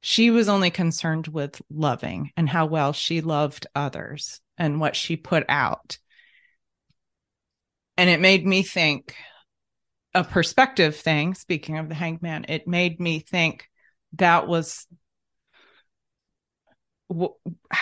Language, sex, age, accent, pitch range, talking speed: English, female, 30-49, American, 155-190 Hz, 120 wpm